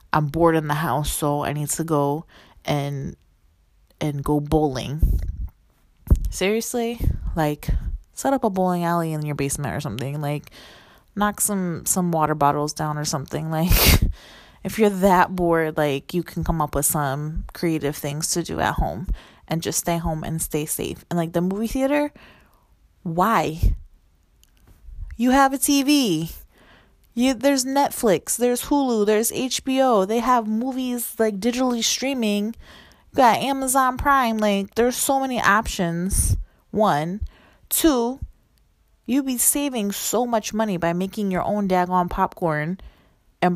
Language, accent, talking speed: English, American, 145 wpm